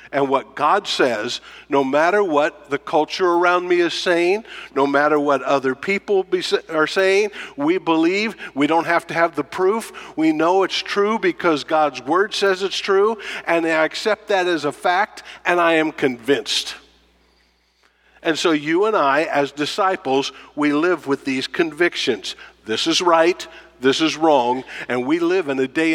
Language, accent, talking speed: English, American, 170 wpm